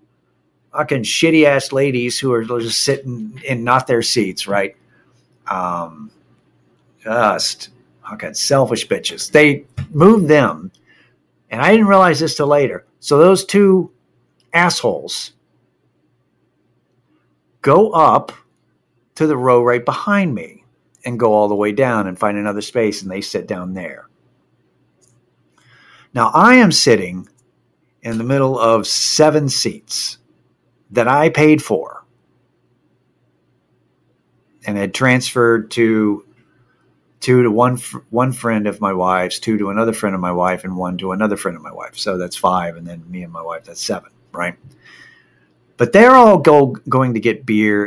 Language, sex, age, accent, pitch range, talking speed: English, male, 50-69, American, 90-135 Hz, 145 wpm